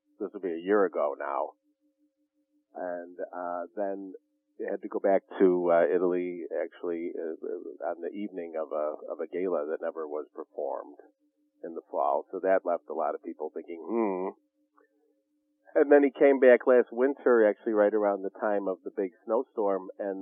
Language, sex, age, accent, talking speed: English, male, 40-59, American, 180 wpm